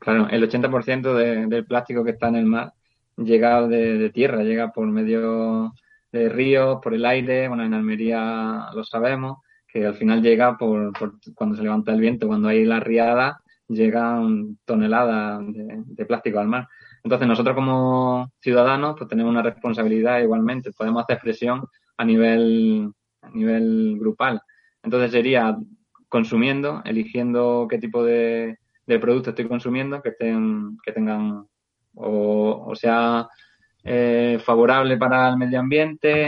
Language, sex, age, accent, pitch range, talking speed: Spanish, male, 20-39, Spanish, 115-130 Hz, 150 wpm